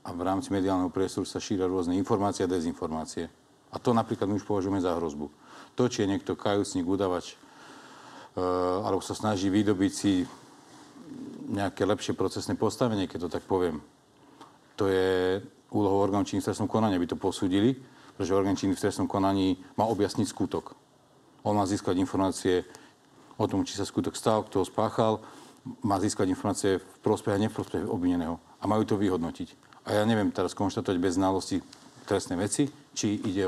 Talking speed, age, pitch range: 170 wpm, 40-59, 95-110 Hz